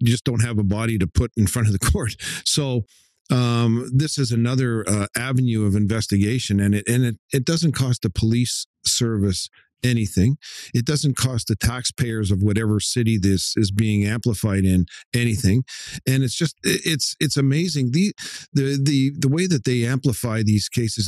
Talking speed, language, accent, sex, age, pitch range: 180 wpm, English, American, male, 50-69, 105-135 Hz